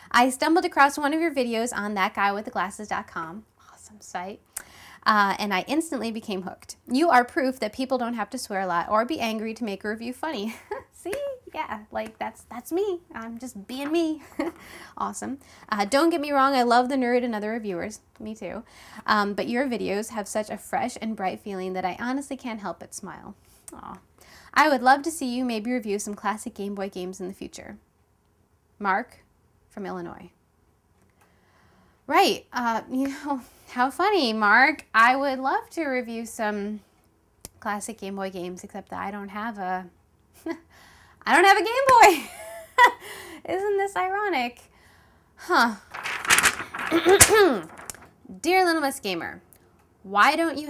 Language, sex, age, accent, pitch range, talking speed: English, female, 10-29, American, 190-275 Hz, 165 wpm